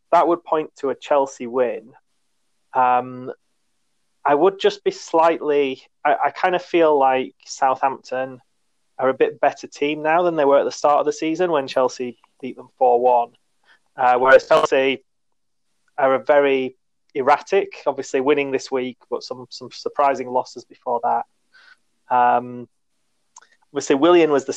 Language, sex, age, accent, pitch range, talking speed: English, male, 20-39, British, 125-160 Hz, 150 wpm